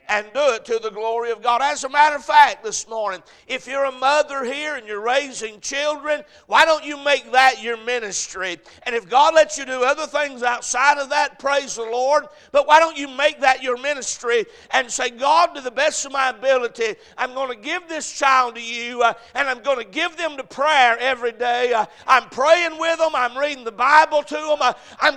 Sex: male